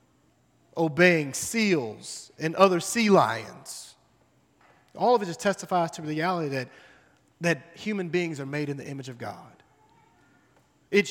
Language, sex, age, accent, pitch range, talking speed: English, male, 30-49, American, 155-200 Hz, 135 wpm